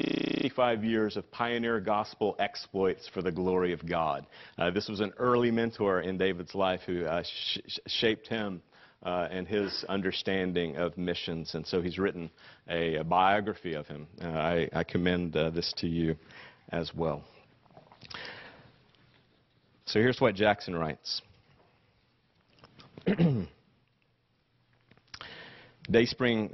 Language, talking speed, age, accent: English, 125 wpm, 40-59, American